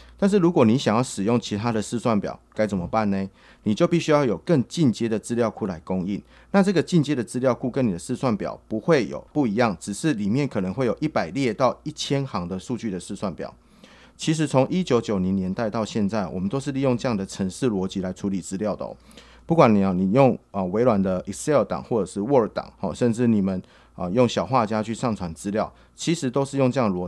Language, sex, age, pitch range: Chinese, male, 30-49, 95-135 Hz